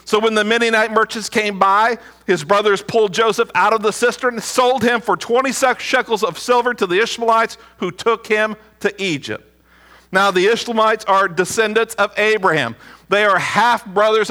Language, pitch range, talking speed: English, 165-230 Hz, 175 wpm